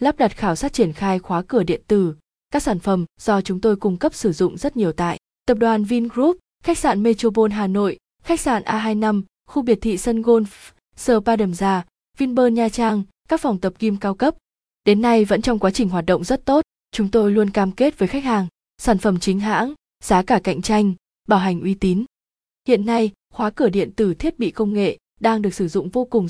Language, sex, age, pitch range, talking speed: Vietnamese, female, 20-39, 190-235 Hz, 220 wpm